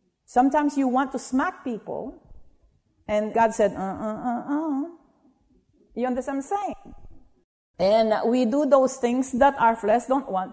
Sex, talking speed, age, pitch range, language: female, 160 wpm, 50-69, 190-260 Hz, English